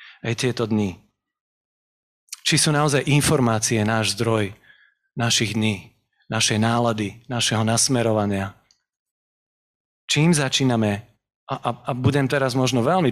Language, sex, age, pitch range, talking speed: Slovak, male, 40-59, 110-130 Hz, 110 wpm